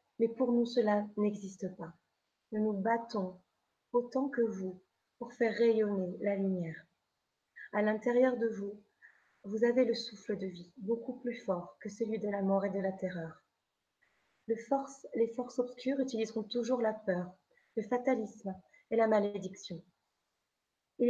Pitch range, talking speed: 200-240 Hz, 150 wpm